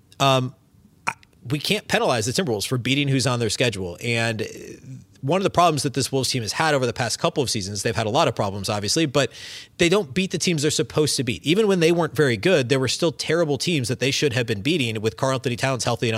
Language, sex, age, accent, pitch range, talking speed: English, male, 30-49, American, 110-140 Hz, 255 wpm